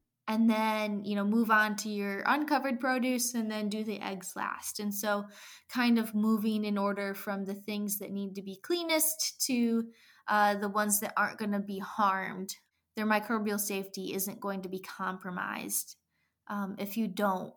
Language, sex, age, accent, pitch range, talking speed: English, female, 20-39, American, 205-240 Hz, 180 wpm